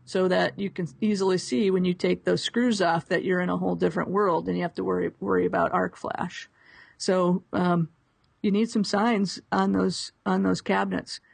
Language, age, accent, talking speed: English, 50-69, American, 205 wpm